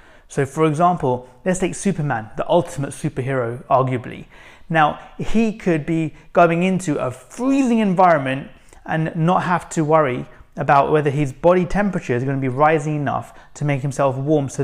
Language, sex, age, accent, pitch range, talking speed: English, male, 30-49, British, 140-175 Hz, 165 wpm